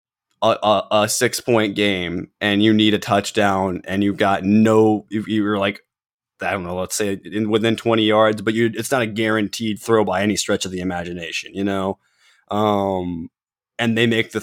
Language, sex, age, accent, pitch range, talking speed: English, male, 20-39, American, 100-115 Hz, 195 wpm